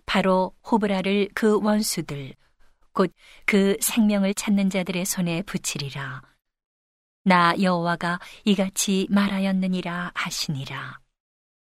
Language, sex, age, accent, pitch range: Korean, female, 40-59, native, 180-210 Hz